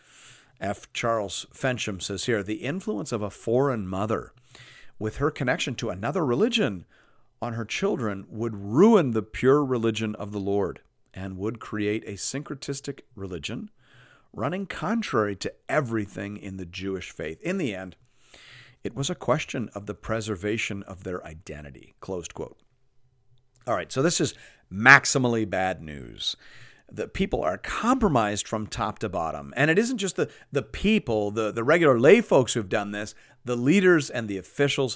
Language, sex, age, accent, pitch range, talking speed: English, male, 50-69, American, 100-130 Hz, 160 wpm